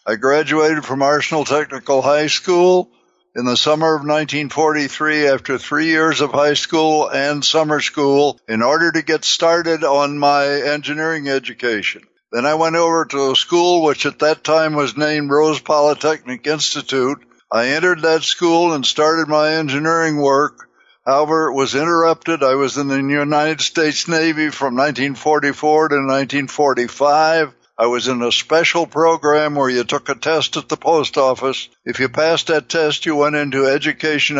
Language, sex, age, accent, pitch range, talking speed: English, male, 60-79, American, 140-160 Hz, 165 wpm